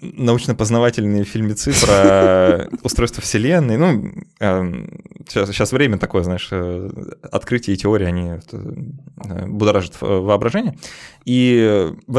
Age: 20-39